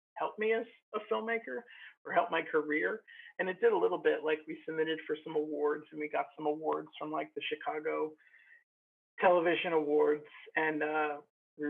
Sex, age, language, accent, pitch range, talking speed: male, 40-59, English, American, 150-165 Hz, 180 wpm